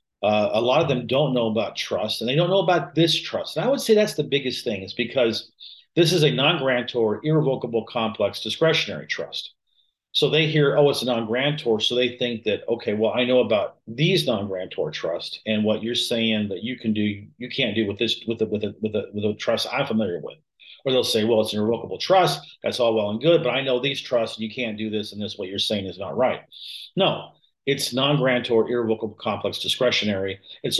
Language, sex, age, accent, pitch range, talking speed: English, male, 40-59, American, 110-150 Hz, 225 wpm